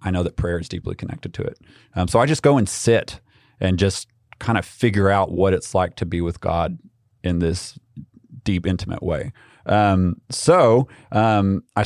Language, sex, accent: English, male, American